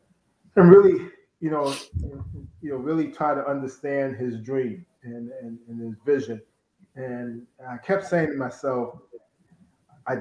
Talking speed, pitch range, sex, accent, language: 140 wpm, 120-140 Hz, male, American, English